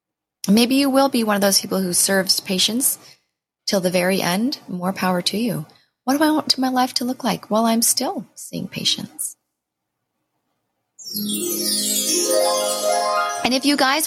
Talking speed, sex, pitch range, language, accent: 160 wpm, female, 180-250 Hz, English, American